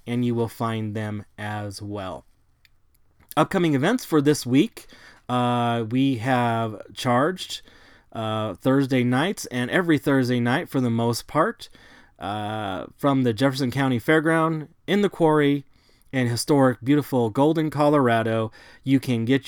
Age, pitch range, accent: 30-49, 110-135 Hz, American